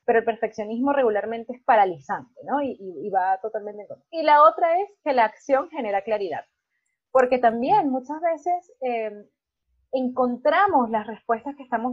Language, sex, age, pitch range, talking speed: Spanish, female, 20-39, 225-290 Hz, 165 wpm